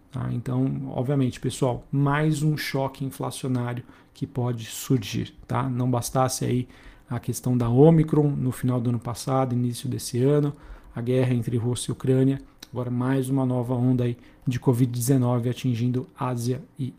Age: 50-69